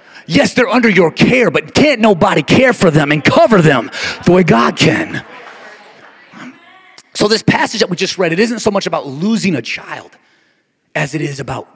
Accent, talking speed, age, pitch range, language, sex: American, 190 wpm, 30-49, 155-220 Hz, English, male